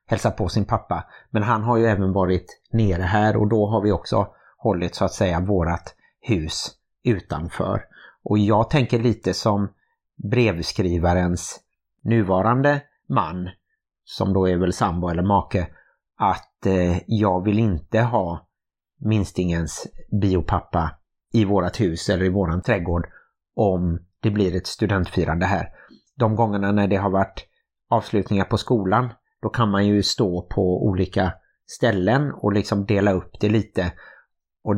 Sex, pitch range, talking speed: male, 95-115 Hz, 145 wpm